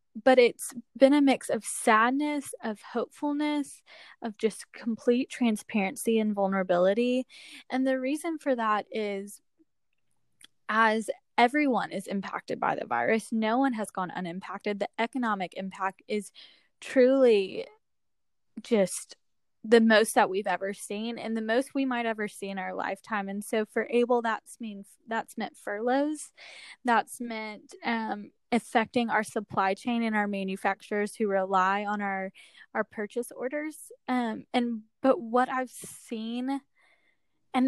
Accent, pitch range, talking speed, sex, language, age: American, 205-255 Hz, 140 wpm, female, English, 10-29